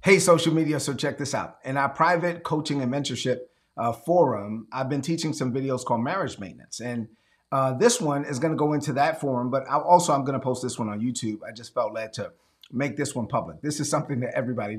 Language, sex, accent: English, male, American